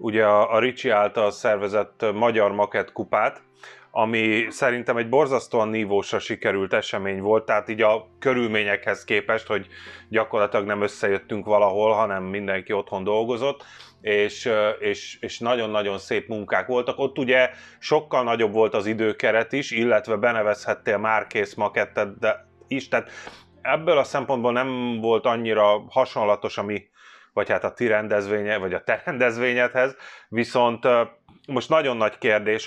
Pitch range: 105-120 Hz